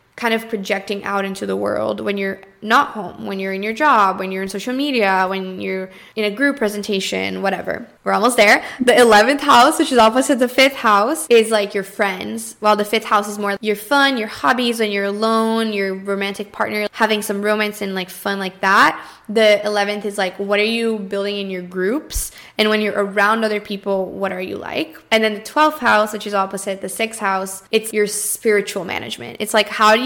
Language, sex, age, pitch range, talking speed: English, female, 10-29, 195-220 Hz, 215 wpm